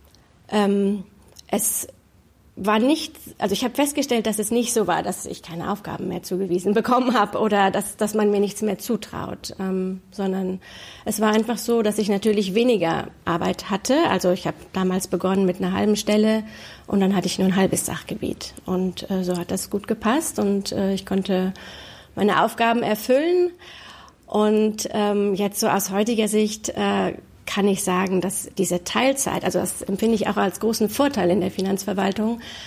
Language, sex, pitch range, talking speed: German, female, 190-220 Hz, 180 wpm